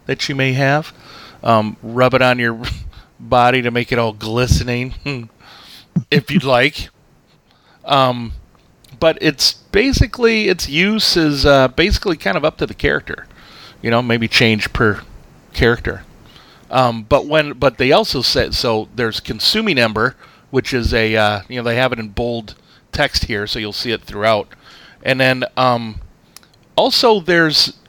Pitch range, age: 110-140 Hz, 30-49